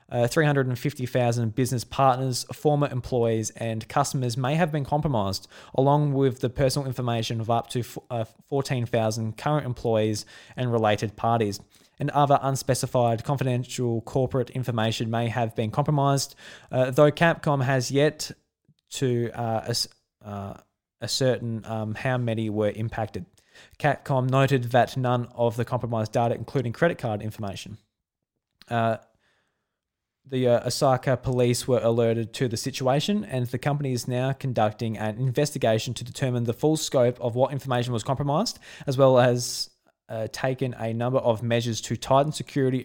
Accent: Australian